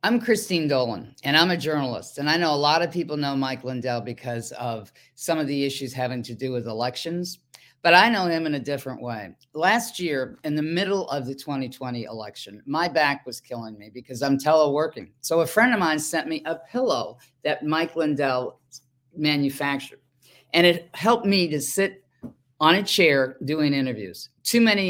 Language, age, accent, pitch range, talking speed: English, 50-69, American, 130-165 Hz, 190 wpm